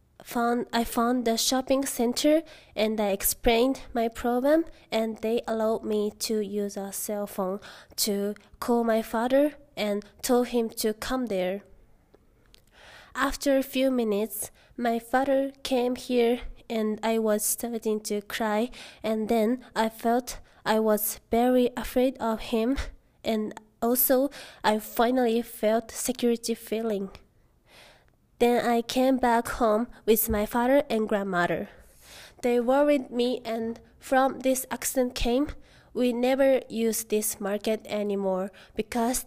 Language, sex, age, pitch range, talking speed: English, female, 20-39, 215-250 Hz, 130 wpm